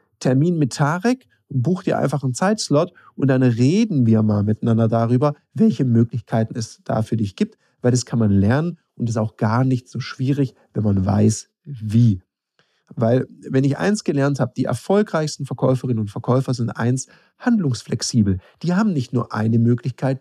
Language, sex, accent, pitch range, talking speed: German, male, German, 120-160 Hz, 170 wpm